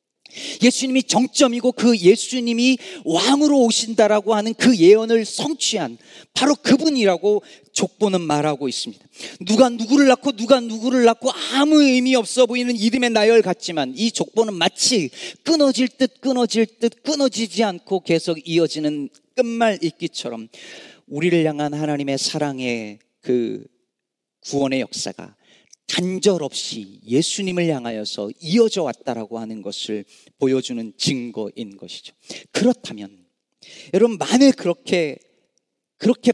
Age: 40-59